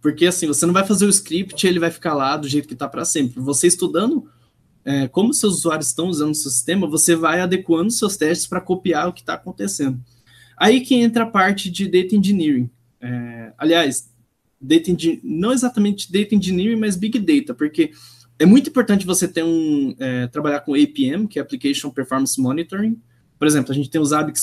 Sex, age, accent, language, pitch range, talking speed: male, 20-39, Brazilian, Portuguese, 135-195 Hz, 200 wpm